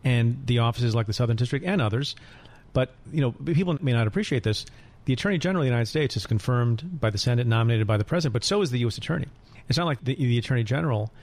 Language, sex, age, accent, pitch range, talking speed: English, male, 40-59, American, 115-140 Hz, 245 wpm